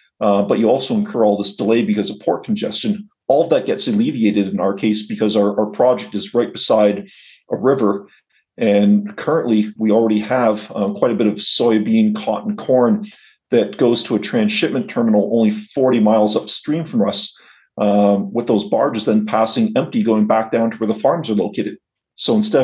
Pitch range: 105-165 Hz